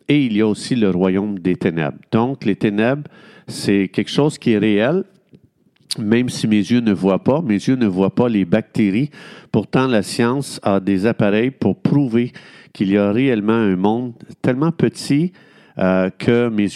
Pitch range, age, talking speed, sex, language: 100-125 Hz, 50-69, 185 wpm, male, French